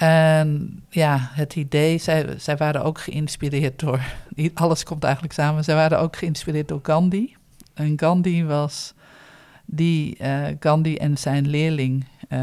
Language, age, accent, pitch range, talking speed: Dutch, 50-69, Dutch, 140-165 Hz, 145 wpm